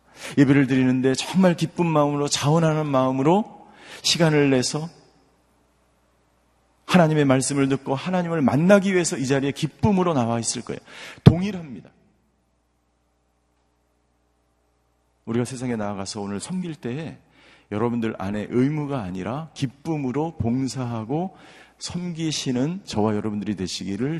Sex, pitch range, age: male, 110-160 Hz, 40-59